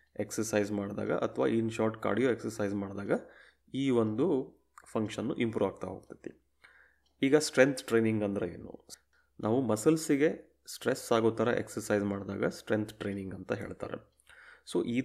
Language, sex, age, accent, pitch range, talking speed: Kannada, male, 30-49, native, 105-120 Hz, 130 wpm